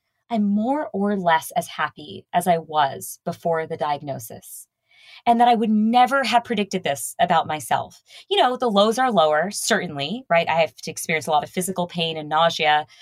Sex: female